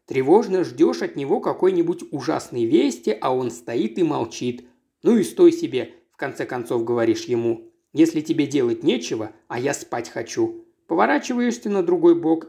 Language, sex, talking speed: Russian, male, 160 wpm